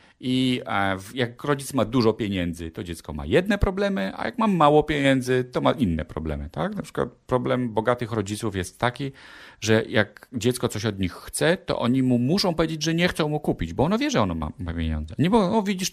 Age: 40-59